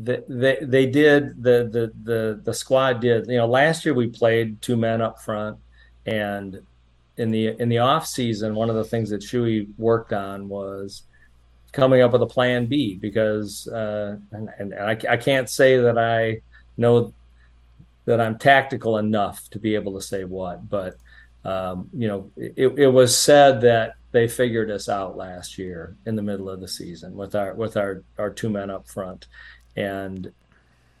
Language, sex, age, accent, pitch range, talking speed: English, male, 40-59, American, 105-120 Hz, 180 wpm